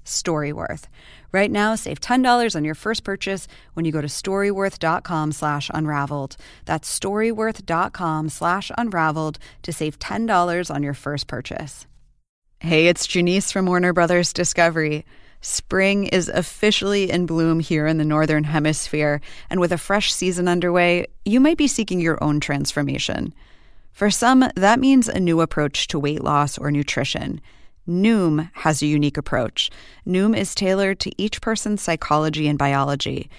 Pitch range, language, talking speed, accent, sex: 150-195 Hz, English, 150 wpm, American, female